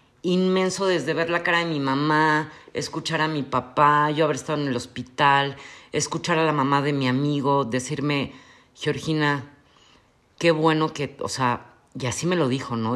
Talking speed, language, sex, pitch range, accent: 175 wpm, Spanish, female, 135-170 Hz, Mexican